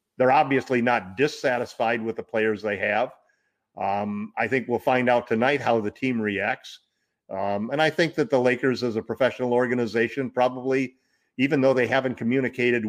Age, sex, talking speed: 50-69, male, 170 wpm